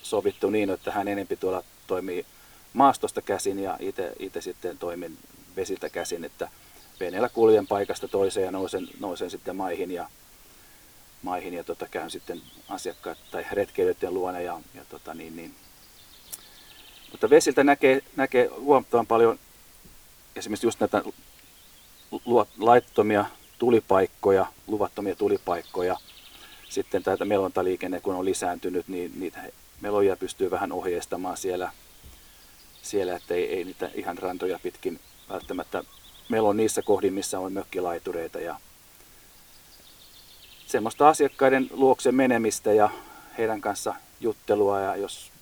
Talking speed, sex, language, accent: 125 wpm, male, English, Finnish